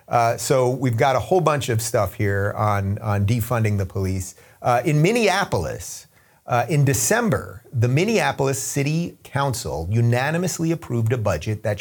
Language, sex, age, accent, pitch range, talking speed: English, male, 30-49, American, 110-140 Hz, 150 wpm